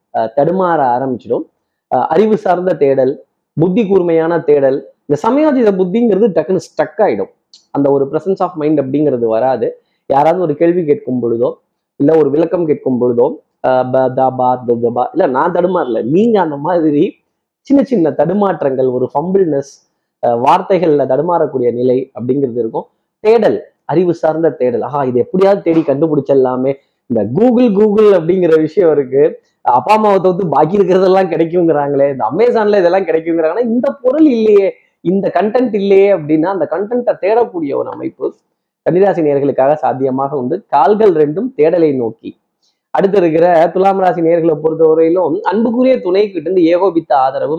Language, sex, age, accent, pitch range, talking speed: Tamil, male, 20-39, native, 145-200 Hz, 130 wpm